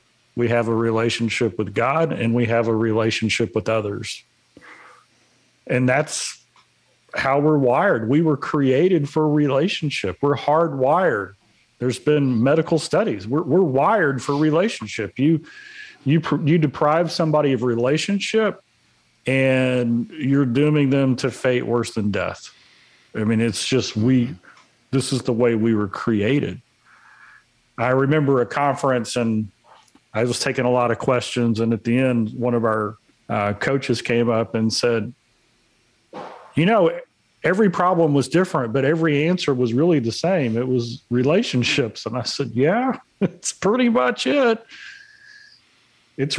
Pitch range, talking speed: 120-150 Hz, 145 wpm